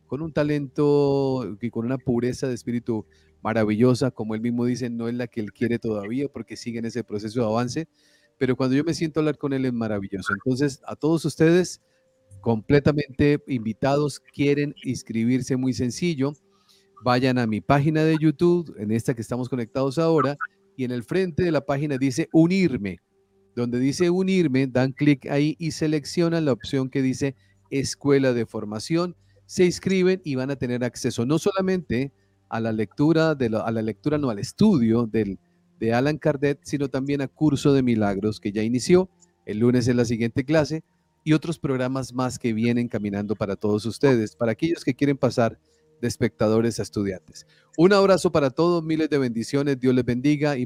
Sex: male